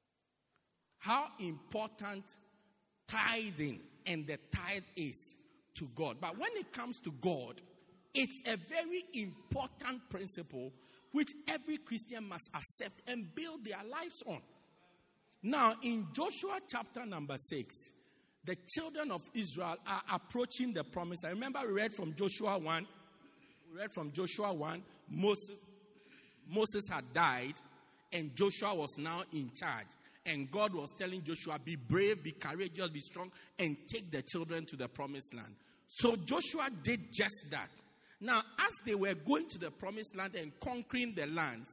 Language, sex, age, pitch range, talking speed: English, male, 50-69, 170-245 Hz, 150 wpm